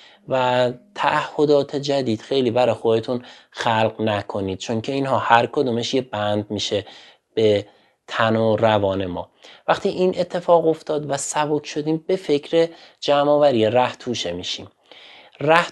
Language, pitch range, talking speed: Persian, 115-145 Hz, 135 wpm